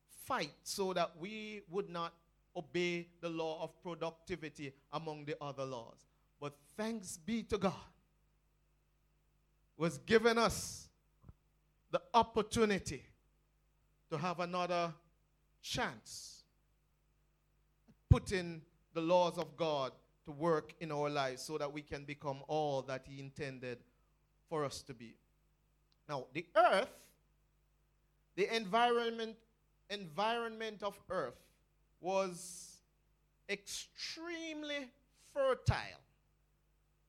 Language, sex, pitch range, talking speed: English, male, 155-195 Hz, 100 wpm